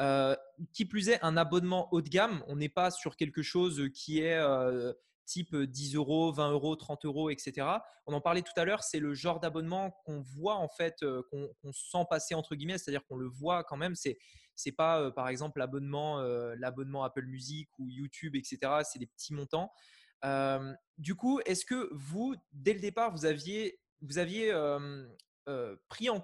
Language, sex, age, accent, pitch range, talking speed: French, male, 20-39, French, 145-195 Hz, 200 wpm